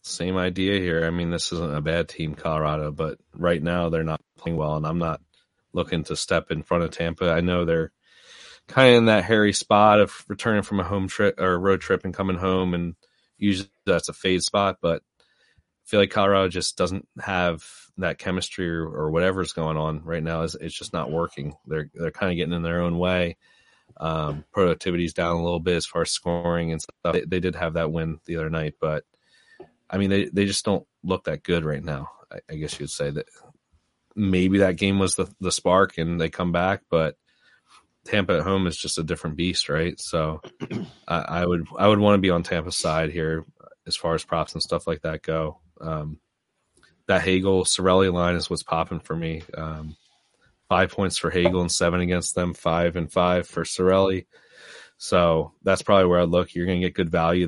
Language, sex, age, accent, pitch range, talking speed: English, male, 30-49, American, 80-95 Hz, 210 wpm